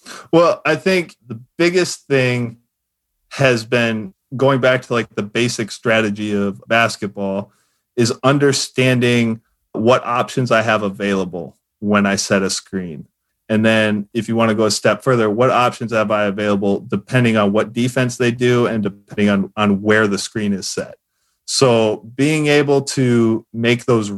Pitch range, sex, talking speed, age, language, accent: 105-125 Hz, male, 160 wpm, 30-49, English, American